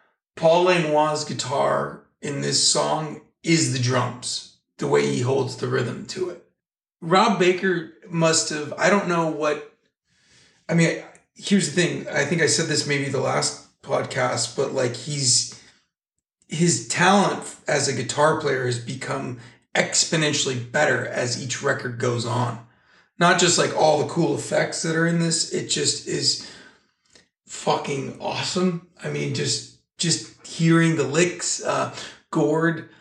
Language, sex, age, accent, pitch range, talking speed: English, male, 40-59, American, 130-165 Hz, 150 wpm